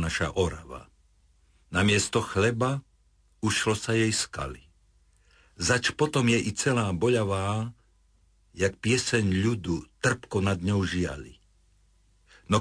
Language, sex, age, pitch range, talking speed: Slovak, male, 60-79, 90-115 Hz, 110 wpm